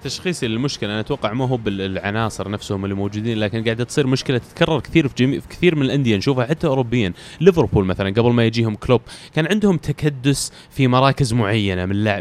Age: 20-39